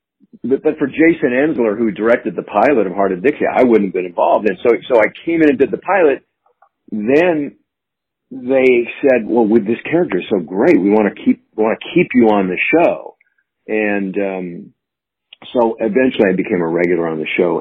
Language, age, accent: English, 50-69, American